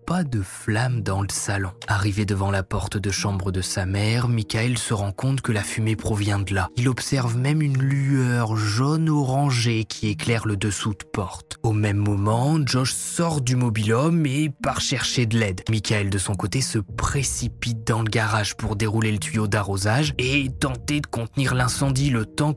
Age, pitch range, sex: 20-39, 105-125 Hz, male